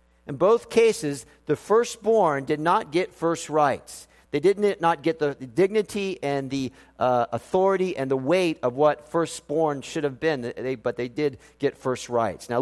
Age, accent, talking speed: 50-69, American, 175 wpm